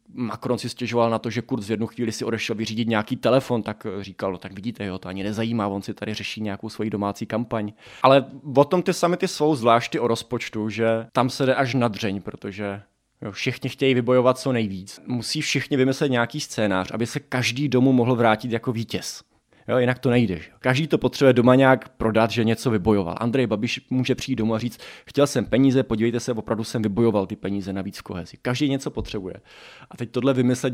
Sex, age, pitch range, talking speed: male, 20-39, 105-125 Hz, 205 wpm